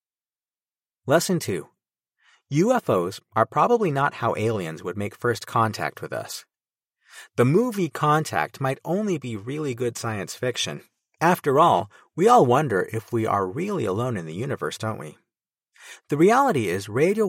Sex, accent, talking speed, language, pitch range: male, American, 150 wpm, English, 110-155 Hz